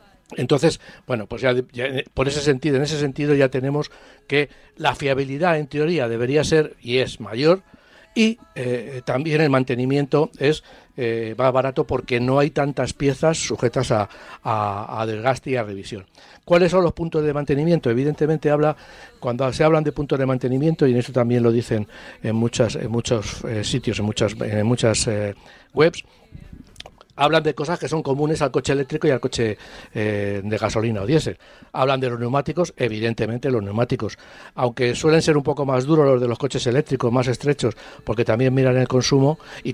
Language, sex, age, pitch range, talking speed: Spanish, male, 60-79, 120-145 Hz, 180 wpm